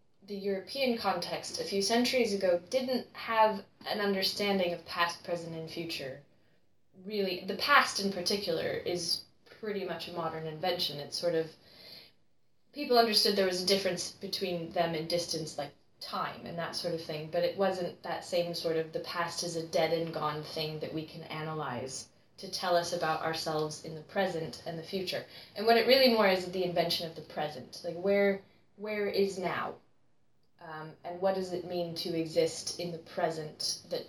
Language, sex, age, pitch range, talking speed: English, female, 20-39, 165-200 Hz, 185 wpm